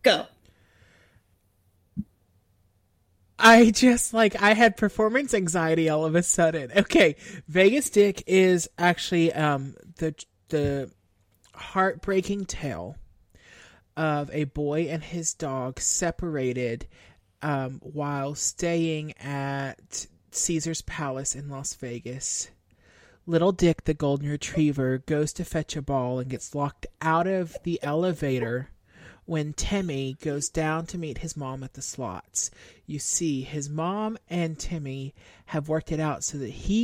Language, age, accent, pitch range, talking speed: English, 30-49, American, 135-180 Hz, 130 wpm